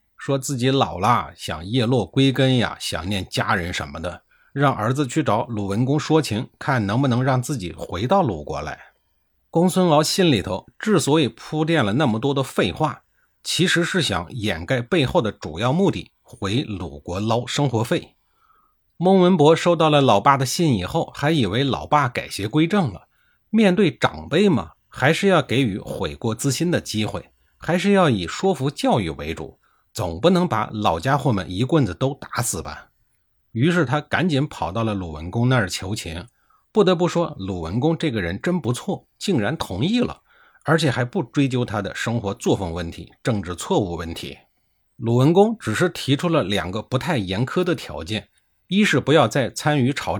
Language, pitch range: Chinese, 100-155 Hz